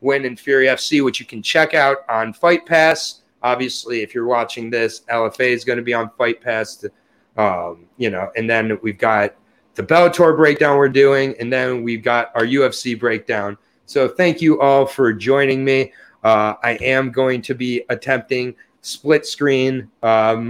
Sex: male